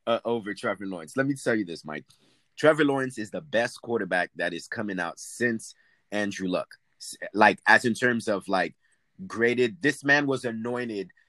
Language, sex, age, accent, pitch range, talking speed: English, male, 30-49, American, 95-130 Hz, 180 wpm